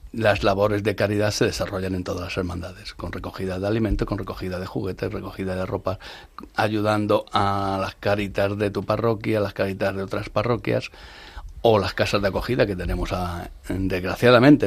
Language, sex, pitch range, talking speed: Spanish, male, 95-105 Hz, 175 wpm